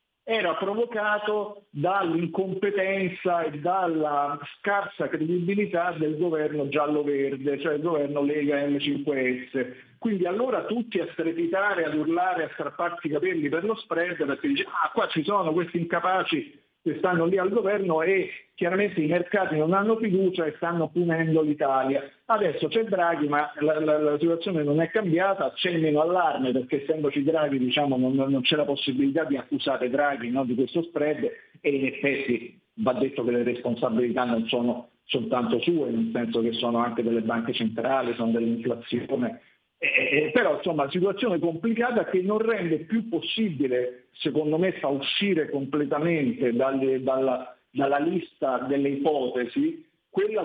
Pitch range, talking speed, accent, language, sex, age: 135-185 Hz, 155 wpm, native, Italian, male, 50-69